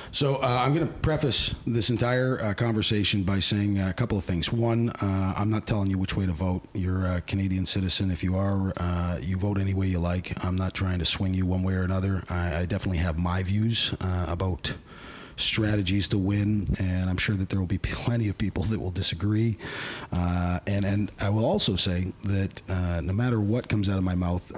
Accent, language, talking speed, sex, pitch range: American, English, 220 wpm, male, 90-110 Hz